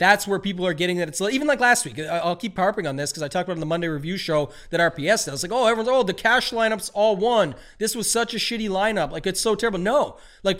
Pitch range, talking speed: 170-210 Hz, 300 wpm